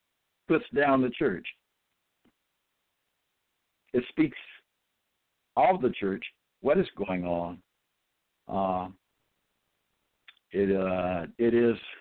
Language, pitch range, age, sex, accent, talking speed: English, 100-140 Hz, 60-79, male, American, 90 wpm